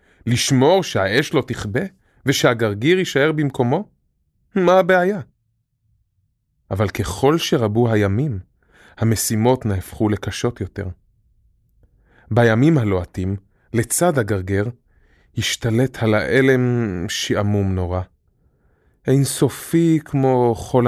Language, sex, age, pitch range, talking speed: Hebrew, male, 30-49, 100-130 Hz, 85 wpm